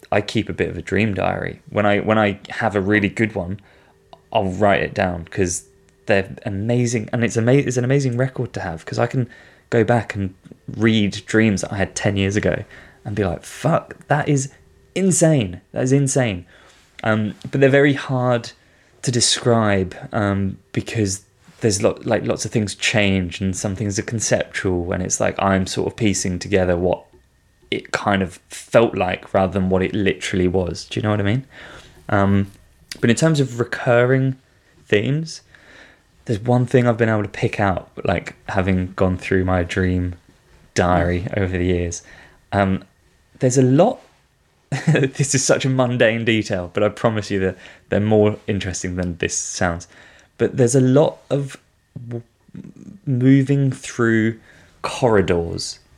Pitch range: 95-125 Hz